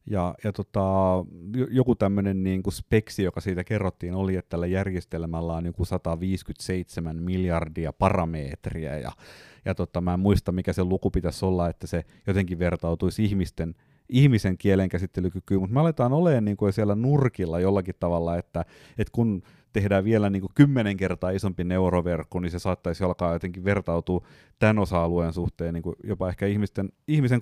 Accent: native